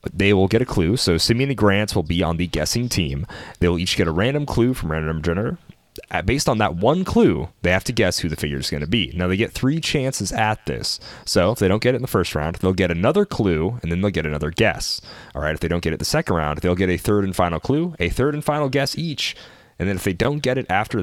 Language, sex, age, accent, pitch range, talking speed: English, male, 30-49, American, 85-115 Hz, 285 wpm